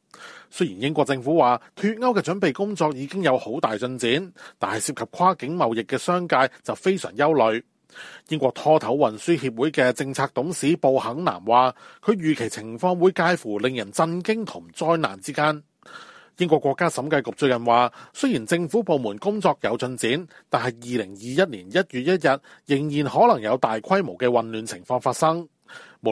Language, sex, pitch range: Chinese, male, 125-180 Hz